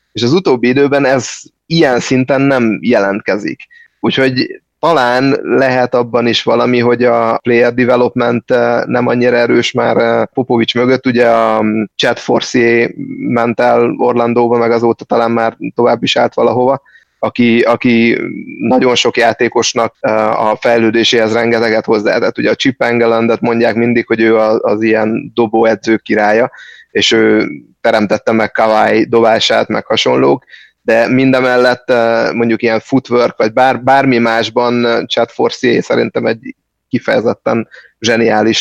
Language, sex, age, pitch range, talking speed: Hungarian, male, 30-49, 115-125 Hz, 130 wpm